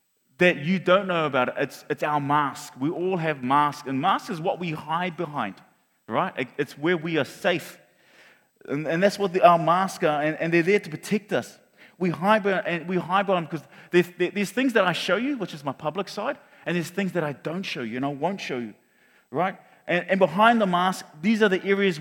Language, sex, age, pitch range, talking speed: English, male, 30-49, 165-205 Hz, 230 wpm